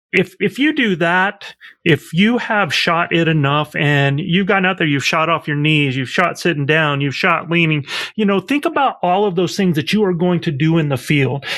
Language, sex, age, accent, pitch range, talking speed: English, male, 30-49, American, 150-195 Hz, 235 wpm